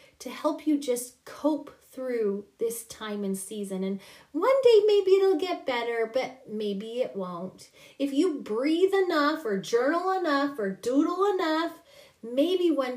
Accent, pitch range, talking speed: American, 245-355 Hz, 155 wpm